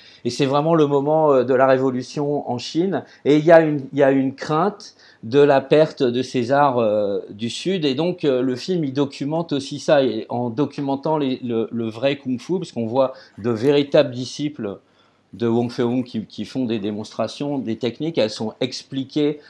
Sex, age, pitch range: male, 50-69, 125-155 Hz